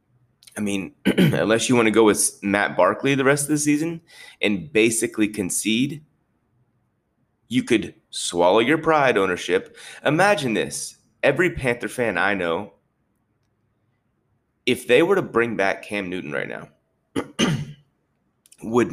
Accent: American